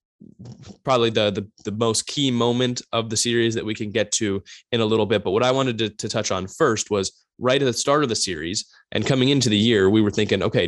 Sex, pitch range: male, 105-125 Hz